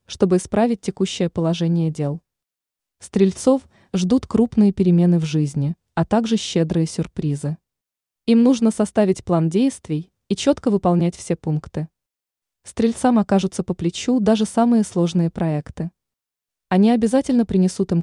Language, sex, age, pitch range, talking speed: Russian, female, 20-39, 170-220 Hz, 125 wpm